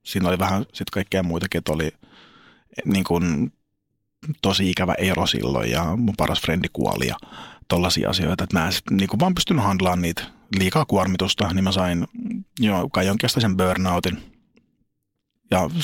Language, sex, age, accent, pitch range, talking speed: Finnish, male, 30-49, native, 90-110 Hz, 155 wpm